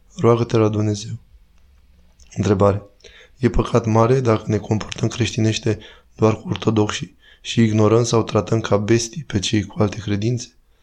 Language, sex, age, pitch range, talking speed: Romanian, male, 20-39, 105-120 Hz, 140 wpm